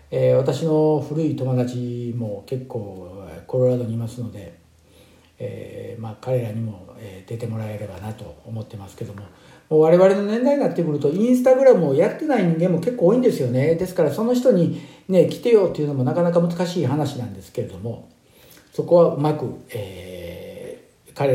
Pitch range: 115-165 Hz